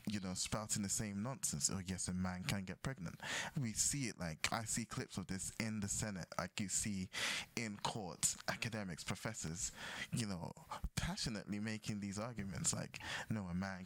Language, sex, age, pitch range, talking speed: English, male, 20-39, 95-115 Hz, 180 wpm